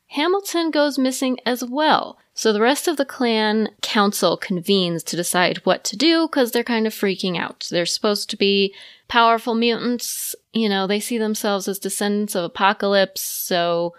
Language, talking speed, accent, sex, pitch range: English, 170 wpm, American, female, 185-240 Hz